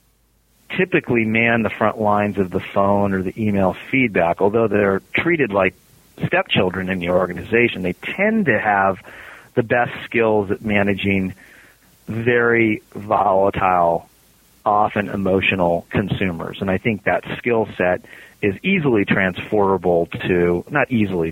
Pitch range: 95-115 Hz